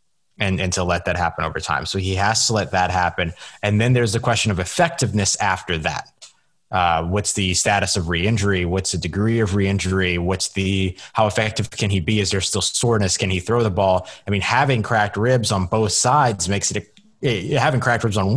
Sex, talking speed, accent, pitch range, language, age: male, 210 wpm, American, 95-115 Hz, English, 20-39